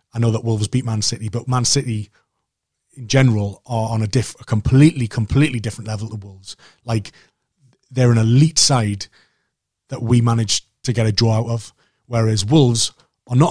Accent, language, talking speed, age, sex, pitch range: British, English, 180 wpm, 30-49, male, 110-130 Hz